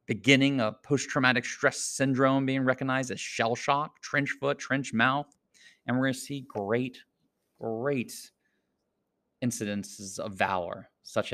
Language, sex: English, male